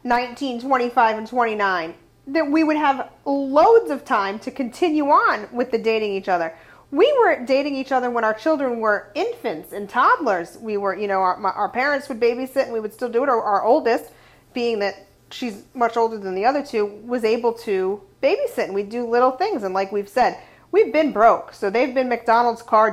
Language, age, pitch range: English, 40-59, 195-260 Hz